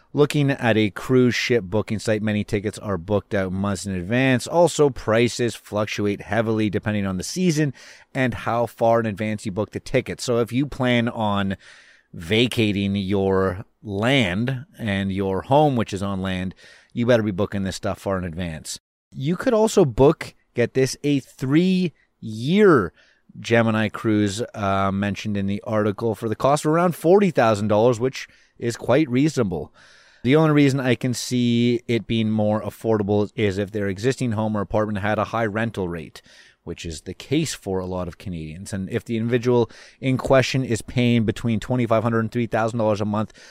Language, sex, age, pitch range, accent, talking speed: English, male, 30-49, 100-125 Hz, American, 175 wpm